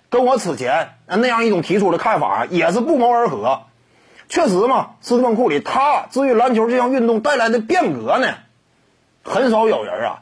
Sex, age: male, 30-49